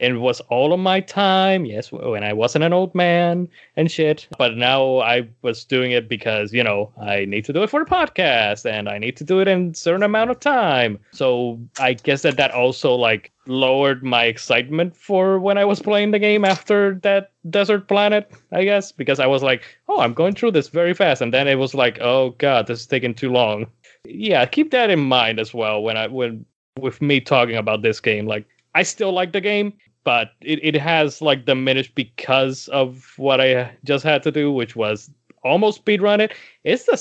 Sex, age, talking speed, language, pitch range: male, 20-39, 215 wpm, English, 125-175 Hz